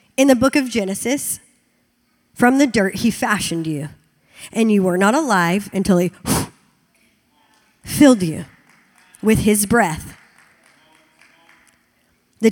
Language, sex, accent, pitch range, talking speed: English, male, American, 200-250 Hz, 115 wpm